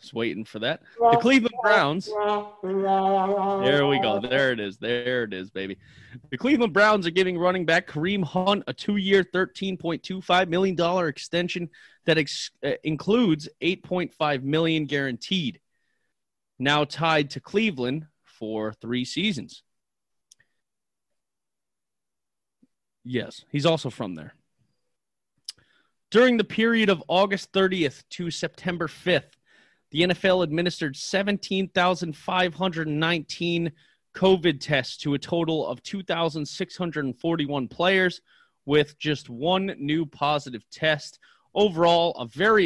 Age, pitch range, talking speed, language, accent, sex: 30-49, 135-185 Hz, 110 wpm, English, American, male